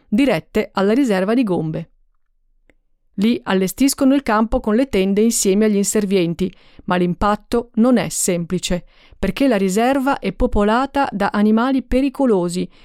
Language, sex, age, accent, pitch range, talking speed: Italian, female, 40-59, native, 195-260 Hz, 130 wpm